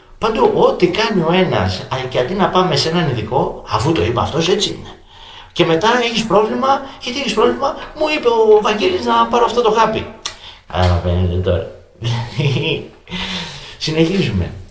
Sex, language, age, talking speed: male, Greek, 30-49, 155 wpm